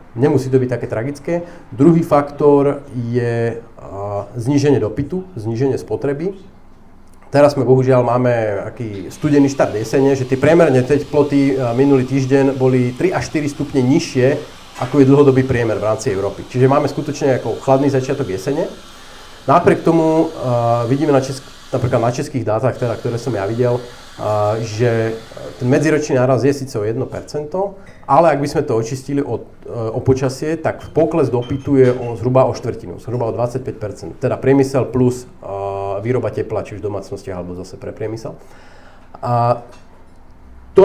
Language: Slovak